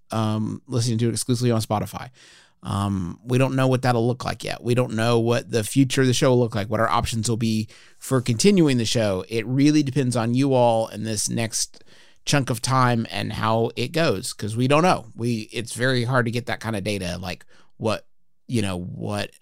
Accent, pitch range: American, 100-125 Hz